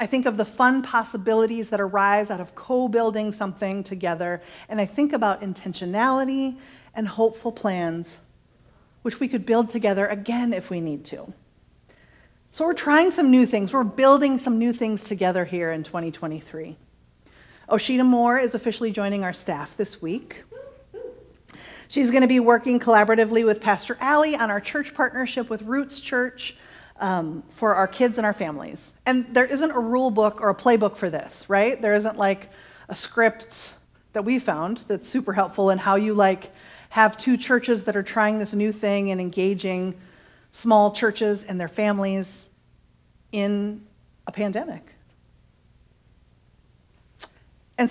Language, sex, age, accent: English, female, 40-59, American